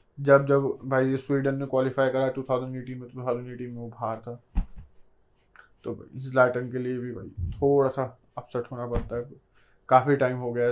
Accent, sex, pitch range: native, male, 120-135 Hz